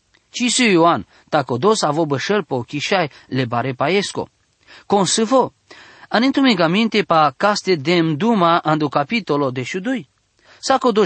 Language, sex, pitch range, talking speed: English, male, 145-205 Hz, 125 wpm